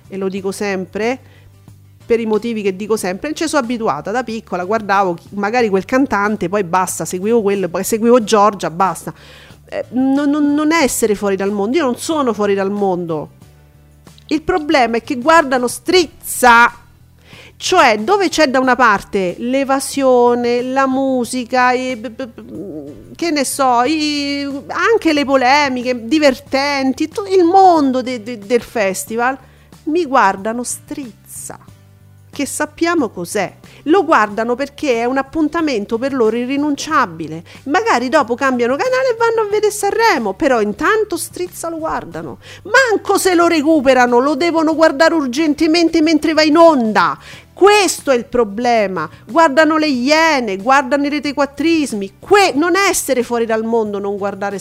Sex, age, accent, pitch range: female, 40-59, native, 210-310 Hz